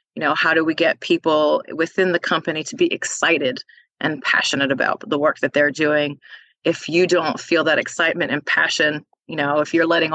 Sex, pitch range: female, 155-175 Hz